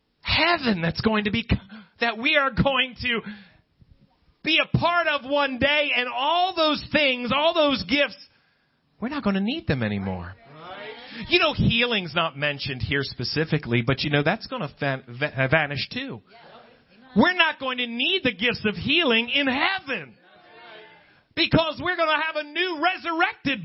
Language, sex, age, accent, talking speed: English, male, 40-59, American, 160 wpm